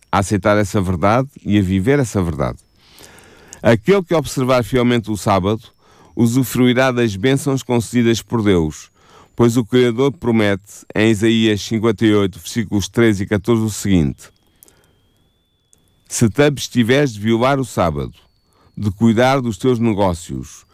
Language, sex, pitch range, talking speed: Portuguese, male, 95-120 Hz, 135 wpm